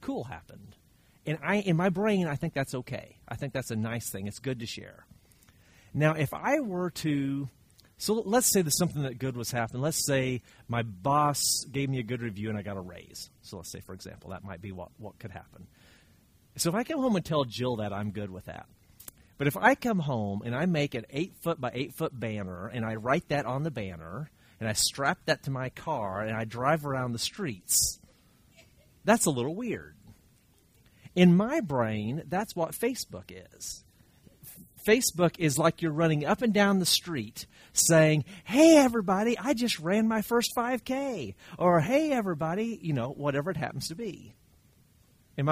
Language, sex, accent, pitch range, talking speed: English, male, American, 115-185 Hz, 200 wpm